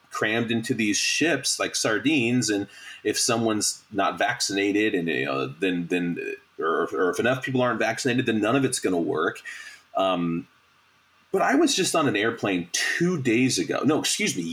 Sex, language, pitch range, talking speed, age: male, English, 95-140 Hz, 180 wpm, 30-49